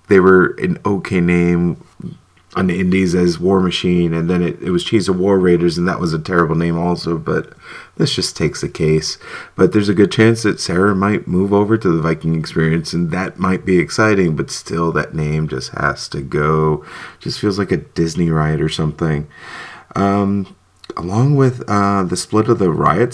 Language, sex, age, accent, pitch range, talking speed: English, male, 30-49, American, 80-100 Hz, 200 wpm